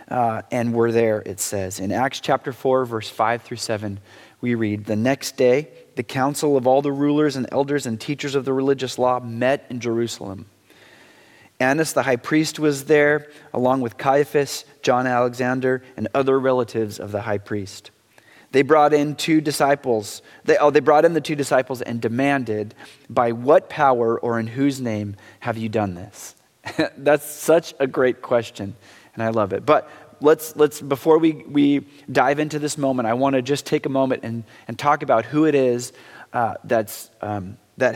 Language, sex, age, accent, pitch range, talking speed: English, male, 30-49, American, 115-150 Hz, 185 wpm